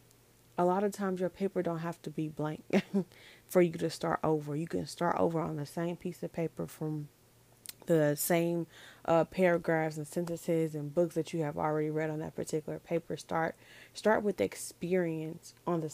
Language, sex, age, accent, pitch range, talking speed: English, female, 20-39, American, 155-180 Hz, 190 wpm